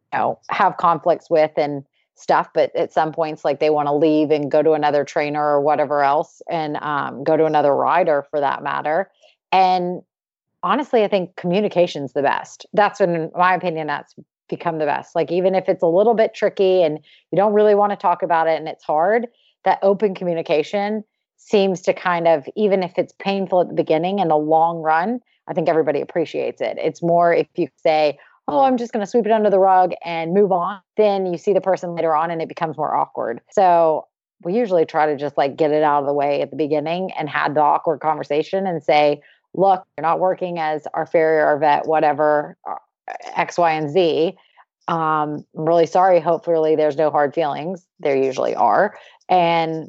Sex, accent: female, American